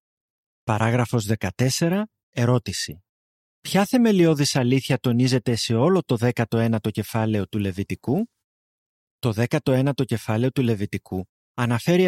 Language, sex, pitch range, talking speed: Greek, male, 110-145 Hz, 100 wpm